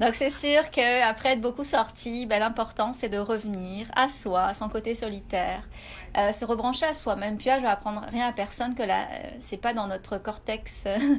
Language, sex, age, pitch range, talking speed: French, female, 30-49, 215-255 Hz, 210 wpm